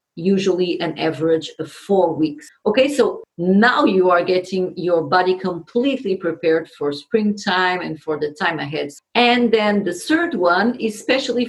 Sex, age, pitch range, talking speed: female, 40-59, 180-235 Hz, 155 wpm